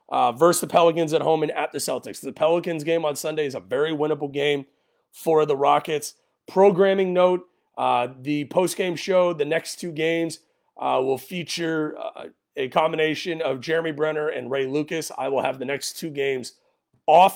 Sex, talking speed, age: male, 185 wpm, 30-49